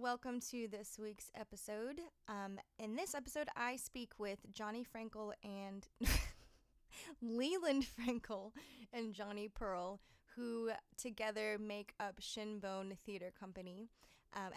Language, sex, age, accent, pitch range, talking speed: English, female, 20-39, American, 190-225 Hz, 115 wpm